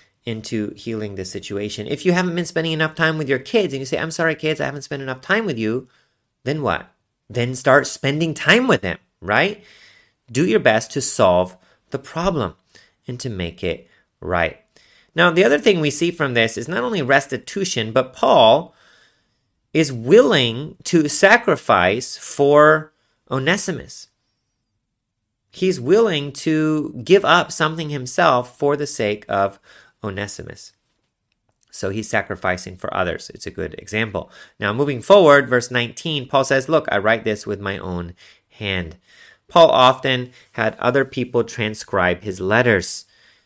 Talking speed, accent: 155 wpm, American